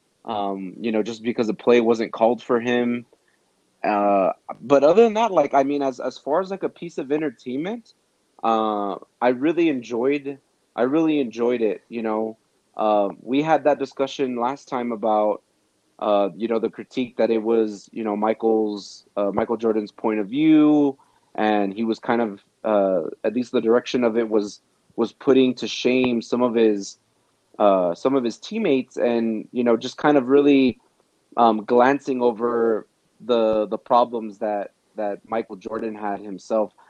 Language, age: English, 30-49